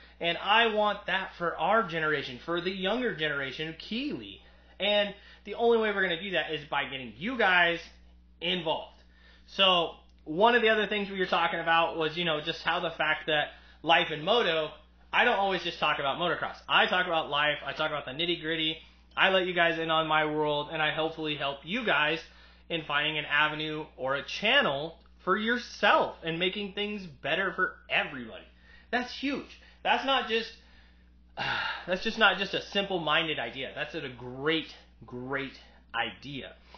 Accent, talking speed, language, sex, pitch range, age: American, 180 wpm, English, male, 140-190 Hz, 20-39